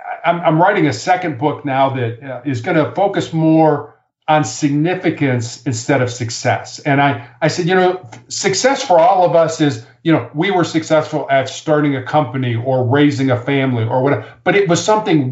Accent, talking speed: American, 190 wpm